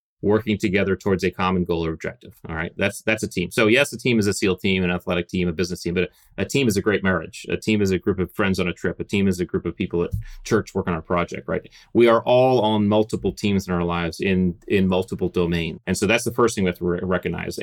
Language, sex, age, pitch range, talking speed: English, male, 30-49, 90-110 Hz, 280 wpm